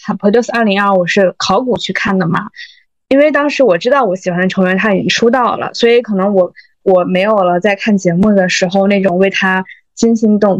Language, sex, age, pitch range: Chinese, female, 20-39, 180-205 Hz